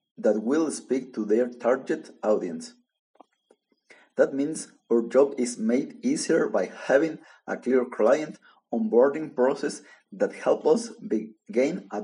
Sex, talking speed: male, 130 wpm